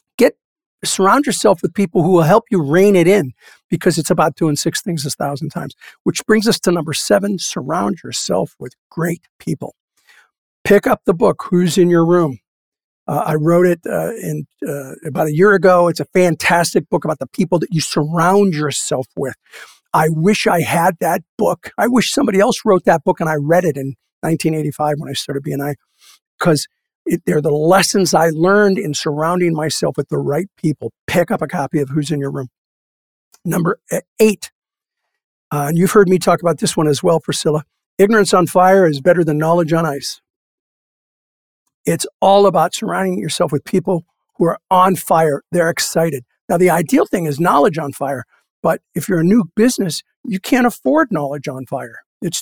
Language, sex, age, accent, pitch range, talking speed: English, male, 50-69, American, 155-195 Hz, 190 wpm